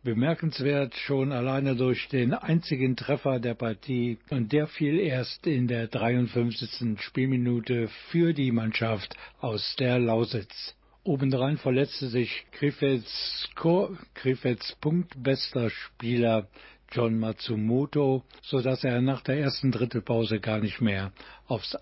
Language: German